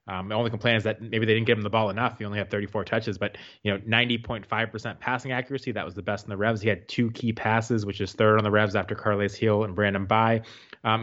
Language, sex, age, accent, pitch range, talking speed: English, male, 20-39, American, 105-120 Hz, 270 wpm